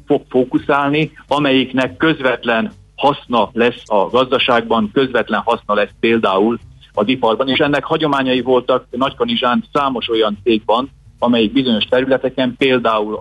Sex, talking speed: male, 120 wpm